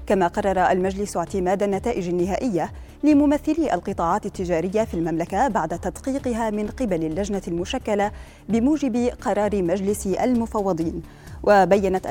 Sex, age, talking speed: female, 20-39, 110 wpm